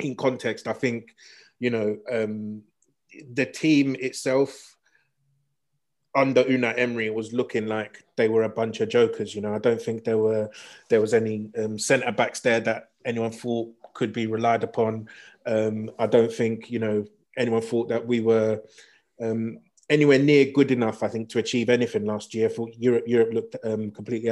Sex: male